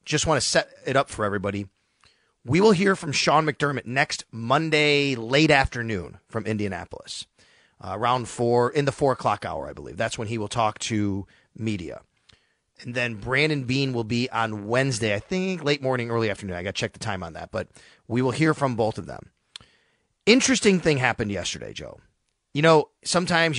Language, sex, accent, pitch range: English, male, American, 110-150 Hz